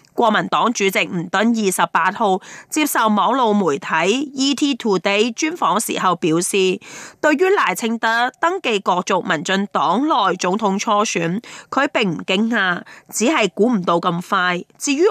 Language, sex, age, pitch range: Chinese, female, 20-39, 190-280 Hz